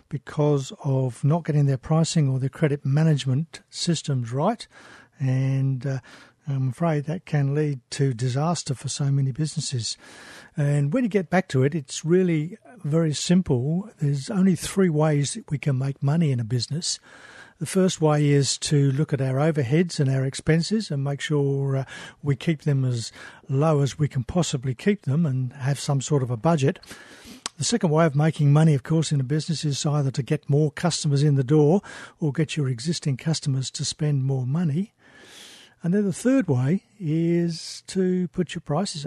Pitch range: 140-170 Hz